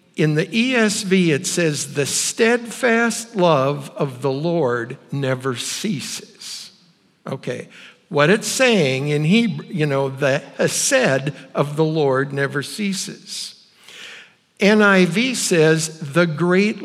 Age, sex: 60-79, male